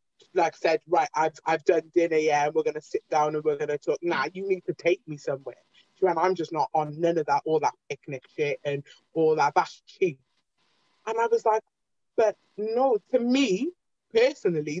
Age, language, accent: 20-39, English, British